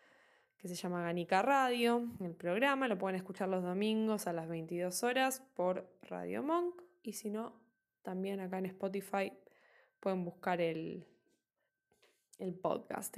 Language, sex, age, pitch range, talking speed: Spanish, female, 10-29, 190-260 Hz, 140 wpm